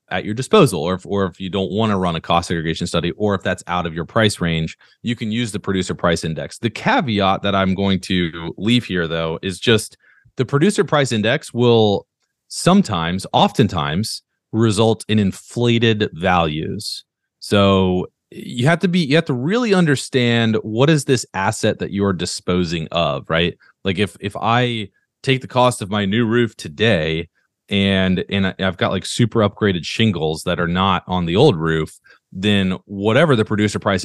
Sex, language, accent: male, English, American